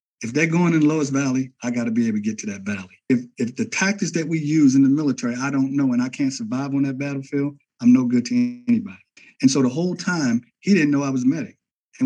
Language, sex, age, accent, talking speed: English, male, 50-69, American, 275 wpm